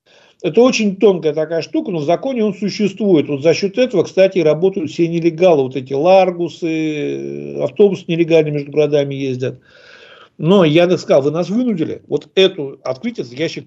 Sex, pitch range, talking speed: male, 135-185 Hz, 160 wpm